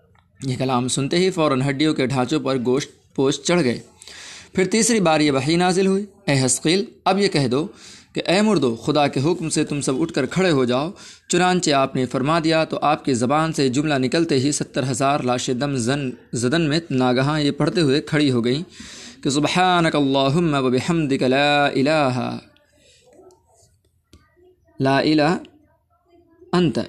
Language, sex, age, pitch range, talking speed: Urdu, male, 20-39, 130-165 Hz, 155 wpm